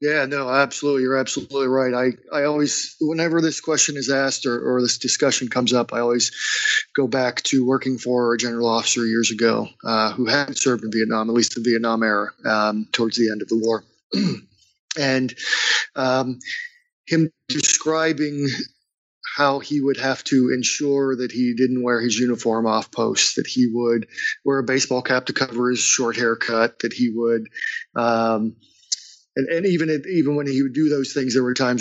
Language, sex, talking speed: English, male, 190 wpm